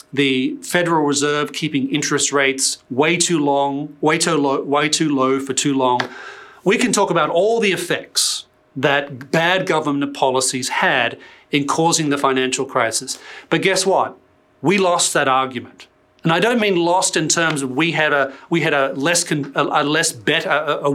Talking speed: 185 wpm